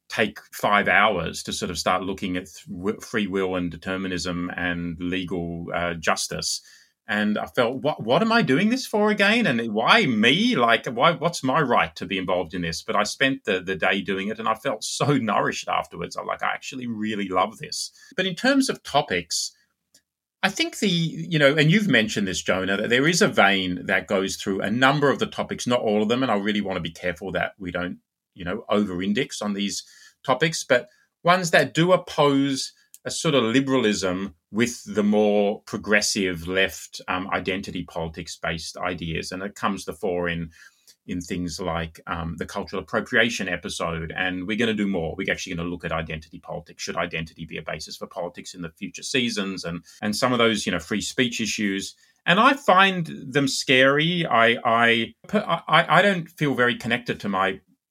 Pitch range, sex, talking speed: 90-150 Hz, male, 200 wpm